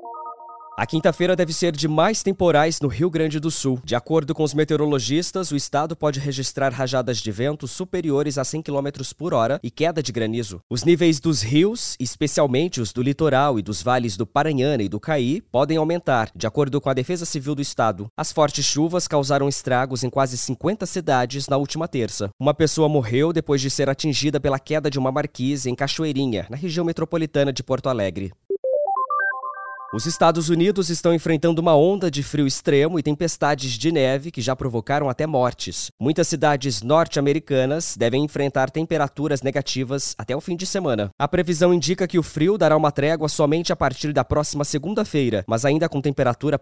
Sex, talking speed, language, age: male, 185 wpm, English, 20-39